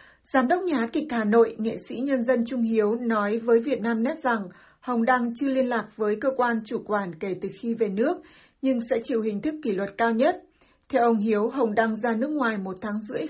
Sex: female